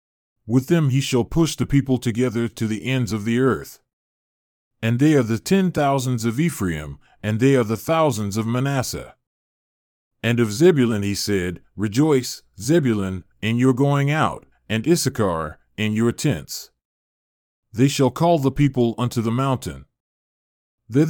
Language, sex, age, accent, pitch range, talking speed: English, male, 40-59, American, 110-140 Hz, 155 wpm